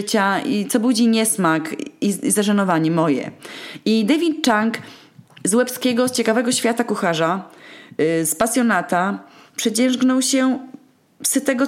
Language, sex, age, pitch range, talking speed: Polish, female, 20-39, 190-245 Hz, 110 wpm